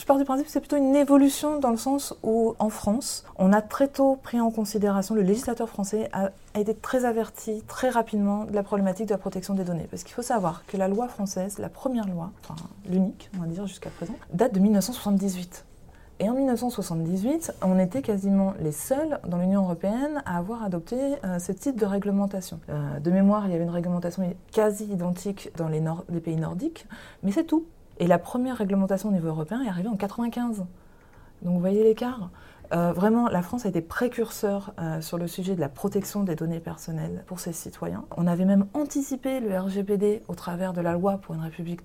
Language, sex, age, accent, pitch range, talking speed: French, female, 20-39, French, 180-225 Hz, 210 wpm